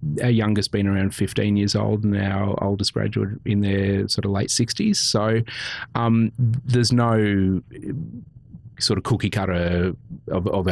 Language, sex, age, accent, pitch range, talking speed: English, male, 30-49, Australian, 90-115 Hz, 150 wpm